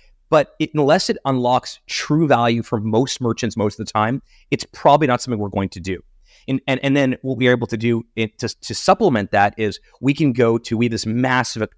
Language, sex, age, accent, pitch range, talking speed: English, male, 30-49, American, 105-135 Hz, 235 wpm